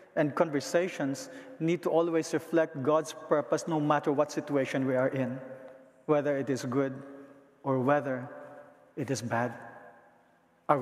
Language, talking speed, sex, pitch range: English, 140 wpm, male, 135-175 Hz